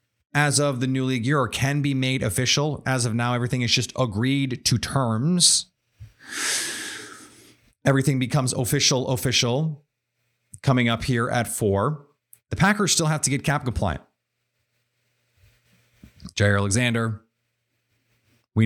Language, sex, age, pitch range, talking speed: English, male, 30-49, 110-135 Hz, 130 wpm